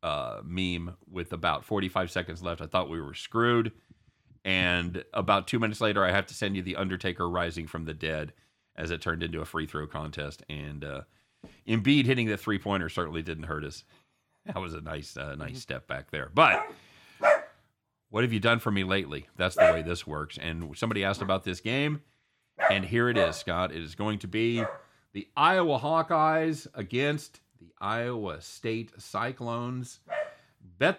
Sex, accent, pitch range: male, American, 90-115 Hz